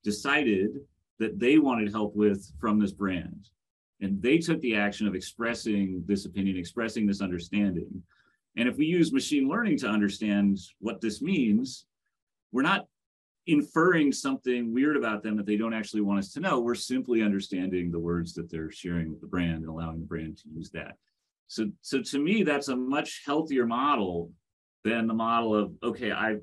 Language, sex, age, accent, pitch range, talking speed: English, male, 30-49, American, 95-120 Hz, 180 wpm